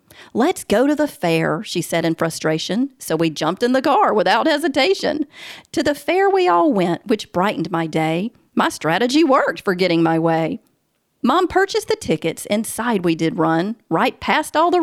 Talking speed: 185 wpm